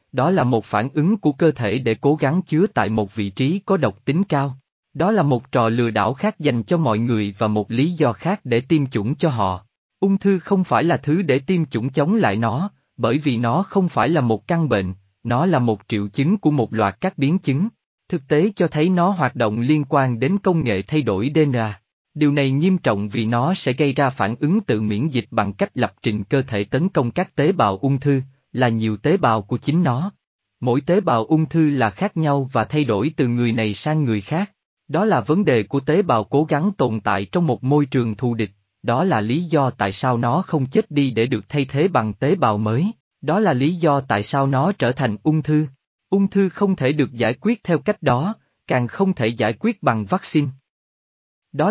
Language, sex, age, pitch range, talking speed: Vietnamese, male, 20-39, 115-165 Hz, 235 wpm